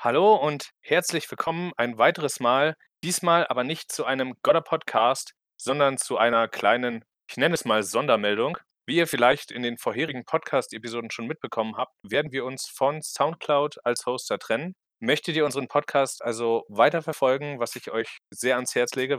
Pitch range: 115-145 Hz